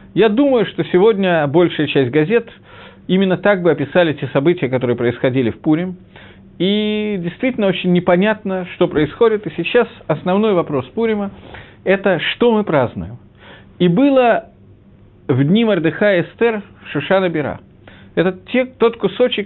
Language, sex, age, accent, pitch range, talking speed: Russian, male, 50-69, native, 135-200 Hz, 140 wpm